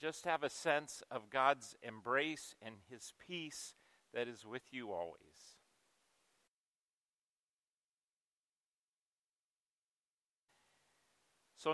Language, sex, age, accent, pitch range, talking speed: English, male, 40-59, American, 130-160 Hz, 80 wpm